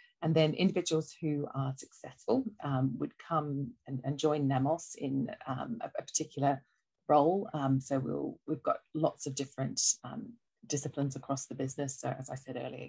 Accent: British